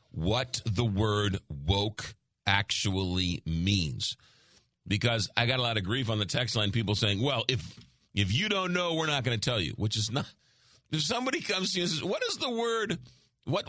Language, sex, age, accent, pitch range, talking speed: English, male, 50-69, American, 105-140 Hz, 200 wpm